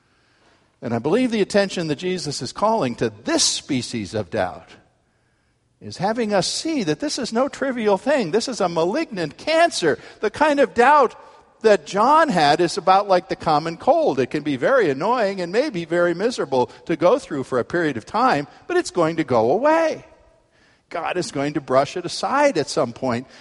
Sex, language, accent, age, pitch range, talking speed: male, English, American, 50-69, 125-205 Hz, 190 wpm